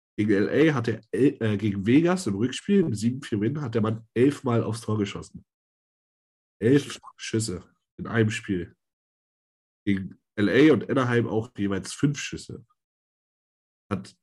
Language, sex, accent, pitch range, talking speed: German, male, German, 105-130 Hz, 135 wpm